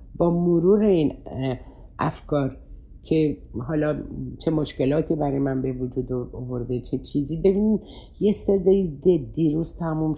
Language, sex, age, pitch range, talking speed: Persian, female, 60-79, 135-195 Hz, 125 wpm